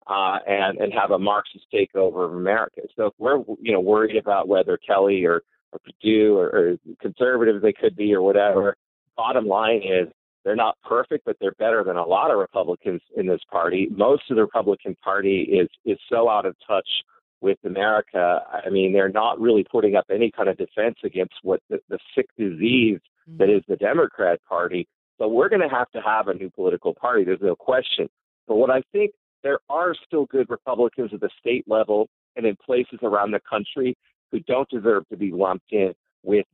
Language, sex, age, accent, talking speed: English, male, 40-59, American, 205 wpm